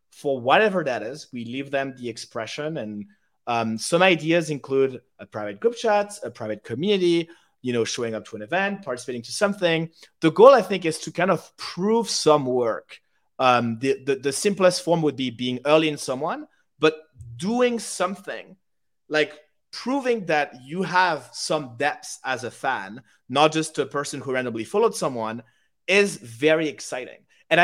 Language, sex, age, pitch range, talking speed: English, male, 30-49, 130-175 Hz, 170 wpm